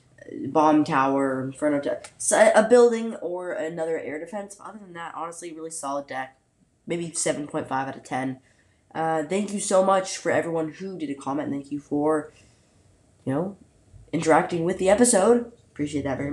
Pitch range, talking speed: 145-195 Hz, 175 wpm